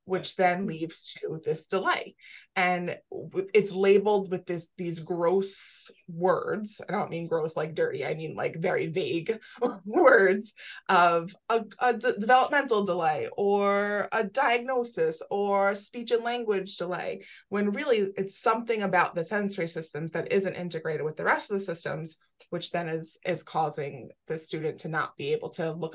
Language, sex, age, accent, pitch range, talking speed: English, female, 20-39, American, 170-225 Hz, 160 wpm